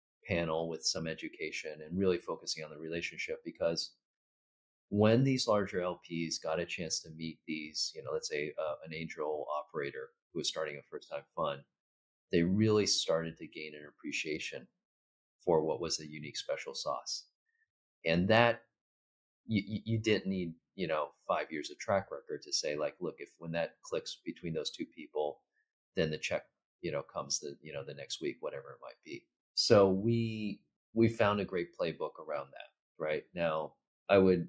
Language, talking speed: English, 180 wpm